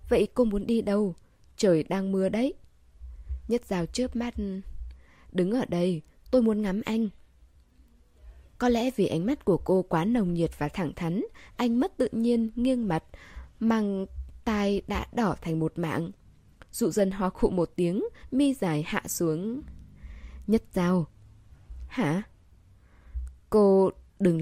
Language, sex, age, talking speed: Vietnamese, female, 20-39, 150 wpm